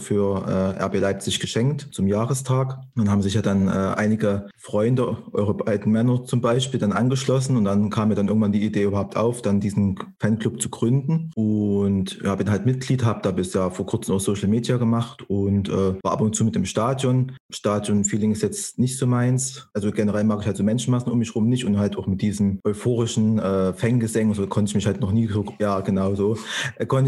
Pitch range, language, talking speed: 100-120 Hz, German, 220 wpm